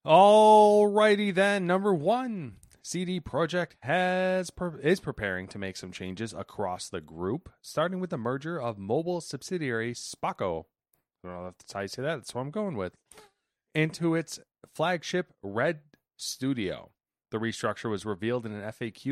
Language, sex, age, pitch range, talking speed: English, male, 30-49, 105-155 Hz, 150 wpm